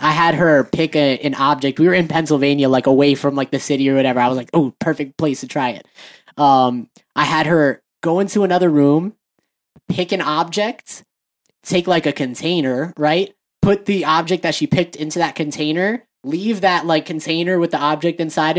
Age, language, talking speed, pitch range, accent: 10-29, English, 195 wpm, 150-180 Hz, American